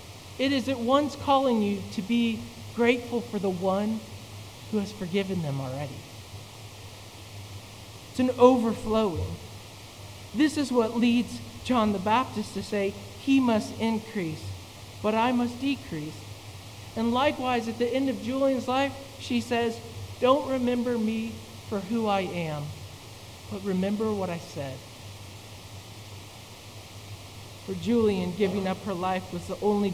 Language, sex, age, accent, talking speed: English, male, 40-59, American, 135 wpm